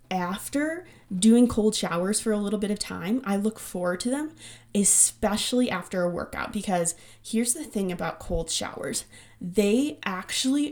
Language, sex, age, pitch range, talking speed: English, female, 20-39, 180-220 Hz, 155 wpm